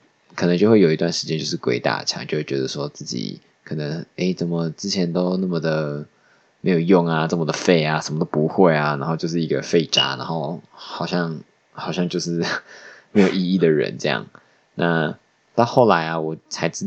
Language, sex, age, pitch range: Chinese, male, 20-39, 80-90 Hz